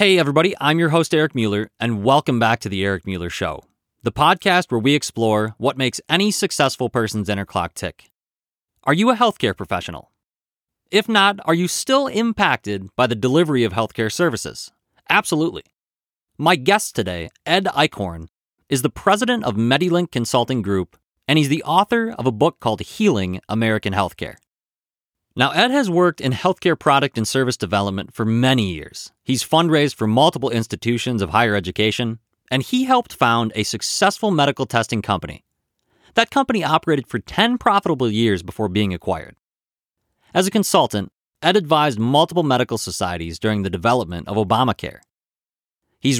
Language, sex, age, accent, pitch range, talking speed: English, male, 30-49, American, 110-160 Hz, 160 wpm